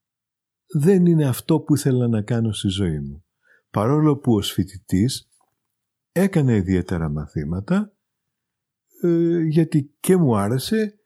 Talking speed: 115 wpm